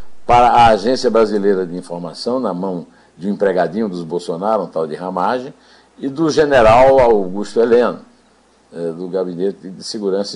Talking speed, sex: 150 wpm, male